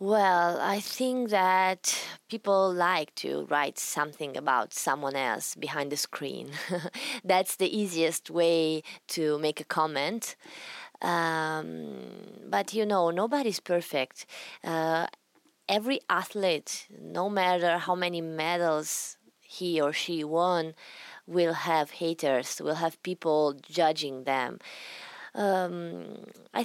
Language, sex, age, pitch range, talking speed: English, female, 20-39, 155-190 Hz, 115 wpm